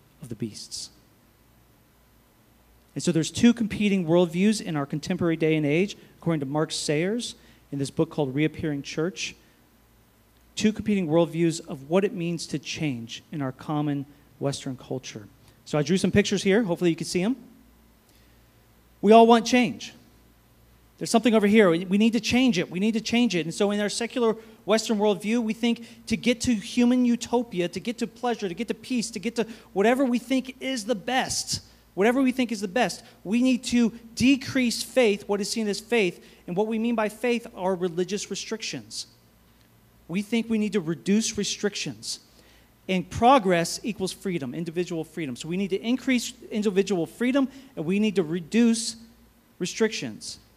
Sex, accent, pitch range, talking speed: male, American, 160-230 Hz, 180 wpm